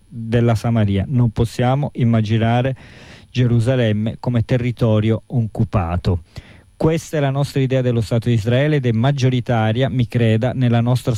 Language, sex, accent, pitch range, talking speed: Italian, male, native, 110-125 Hz, 135 wpm